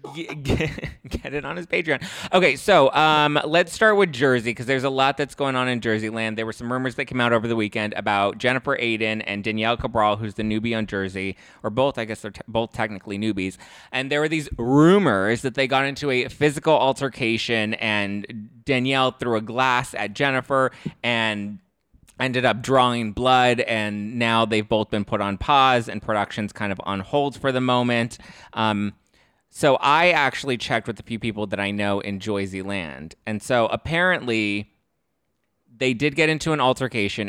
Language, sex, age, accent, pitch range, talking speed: English, male, 20-39, American, 105-135 Hz, 185 wpm